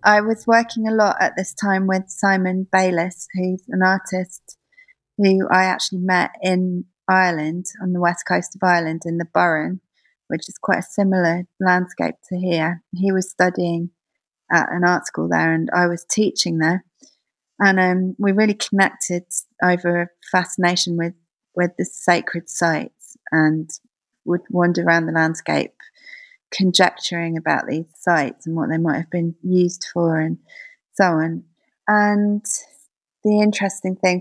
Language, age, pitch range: English, 30-49, 170-190 Hz